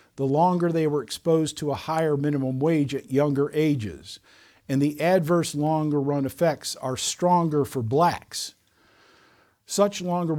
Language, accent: English, American